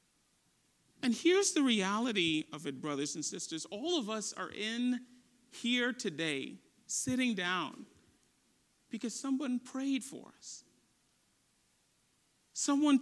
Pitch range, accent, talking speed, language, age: 205-275 Hz, American, 110 wpm, English, 40-59